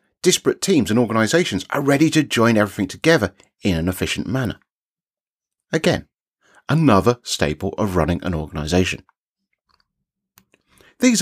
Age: 30-49